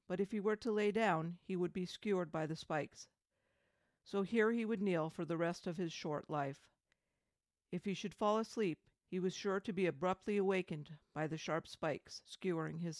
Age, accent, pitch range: 50-69, American, 160-195 Hz